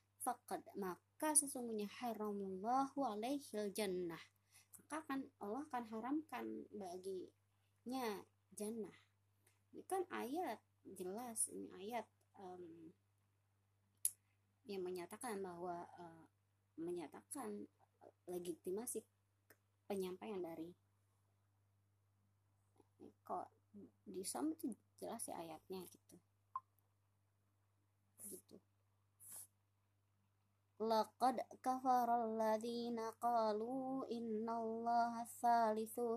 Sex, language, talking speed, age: male, Indonesian, 70 wpm, 30-49